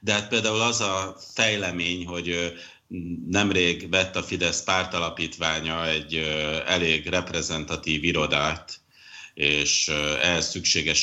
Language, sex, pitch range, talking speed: Hungarian, male, 80-95 Hz, 100 wpm